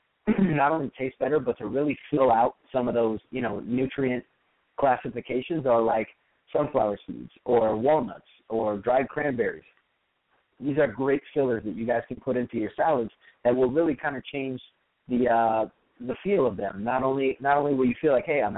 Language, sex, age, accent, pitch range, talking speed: English, male, 30-49, American, 115-130 Hz, 190 wpm